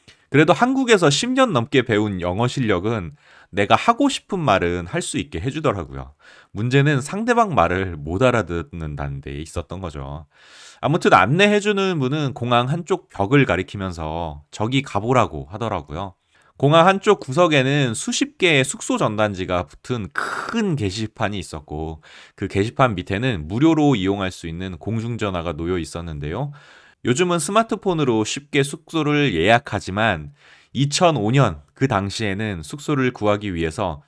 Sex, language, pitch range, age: male, Korean, 90-140 Hz, 30-49